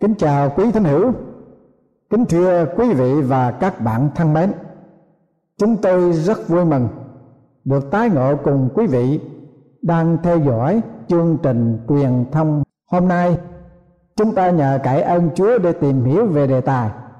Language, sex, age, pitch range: Thai, male, 60-79, 135-180 Hz